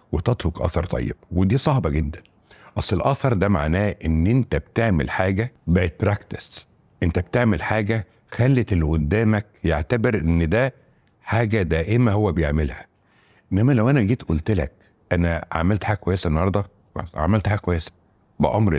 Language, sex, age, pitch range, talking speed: Arabic, male, 60-79, 85-110 Hz, 145 wpm